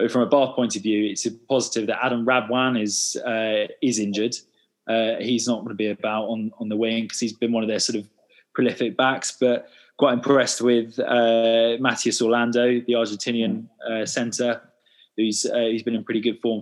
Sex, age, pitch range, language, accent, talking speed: male, 20-39, 115-130 Hz, English, British, 200 wpm